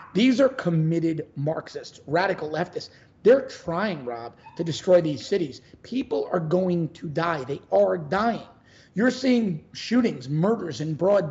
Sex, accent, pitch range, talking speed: male, American, 155-210 Hz, 145 wpm